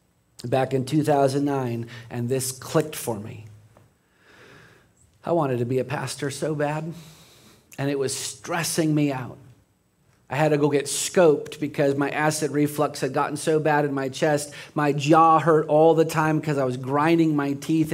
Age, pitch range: 40-59, 130-155 Hz